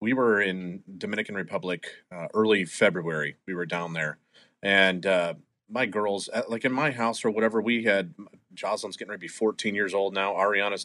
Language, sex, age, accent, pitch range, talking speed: English, male, 30-49, American, 95-110 Hz, 190 wpm